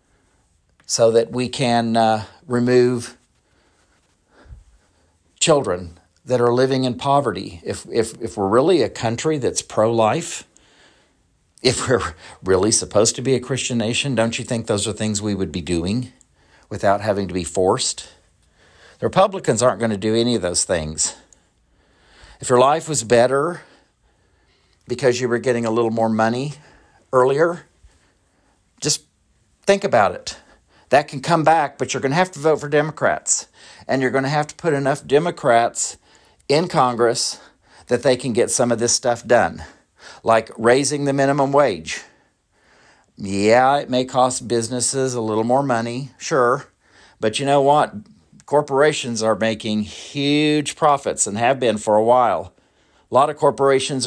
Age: 50-69